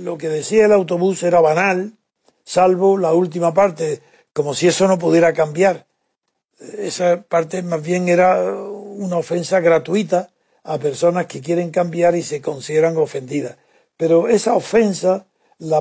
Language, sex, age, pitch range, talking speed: Spanish, male, 60-79, 160-195 Hz, 145 wpm